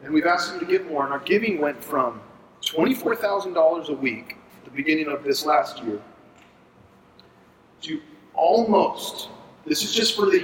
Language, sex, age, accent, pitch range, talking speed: English, male, 40-59, American, 160-260 Hz, 165 wpm